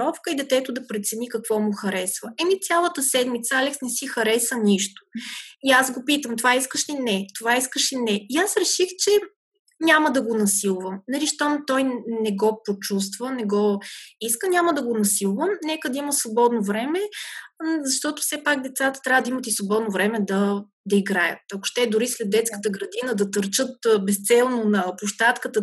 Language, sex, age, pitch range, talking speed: Bulgarian, female, 20-39, 210-265 Hz, 180 wpm